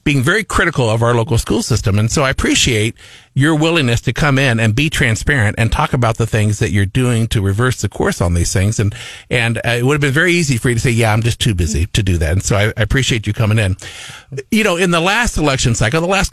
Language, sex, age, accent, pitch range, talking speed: English, male, 50-69, American, 110-140 Hz, 265 wpm